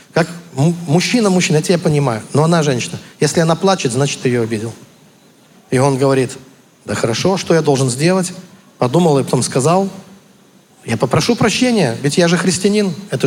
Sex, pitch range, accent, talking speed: male, 140-200 Hz, native, 170 wpm